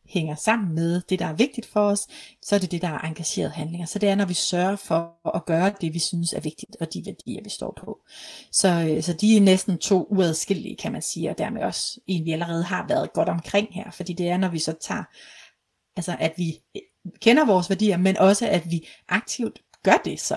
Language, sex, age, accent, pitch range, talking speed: Danish, female, 30-49, native, 175-225 Hz, 230 wpm